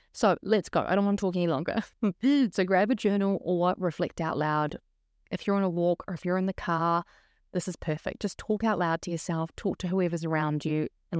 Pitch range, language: 165-200 Hz, English